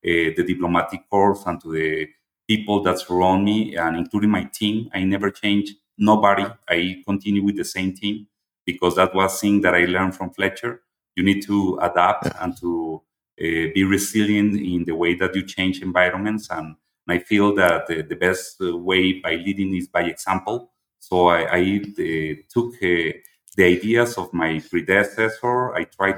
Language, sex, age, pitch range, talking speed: English, male, 30-49, 90-105 Hz, 175 wpm